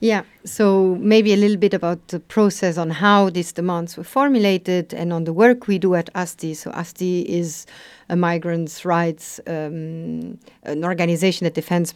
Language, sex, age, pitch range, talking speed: English, female, 50-69, 170-205 Hz, 170 wpm